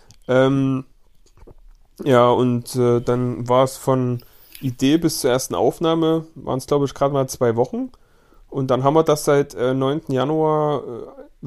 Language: German